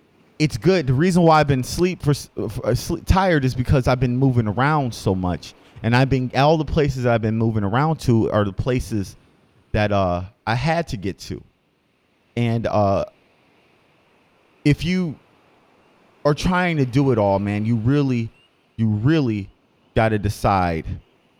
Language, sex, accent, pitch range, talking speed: English, male, American, 100-140 Hz, 170 wpm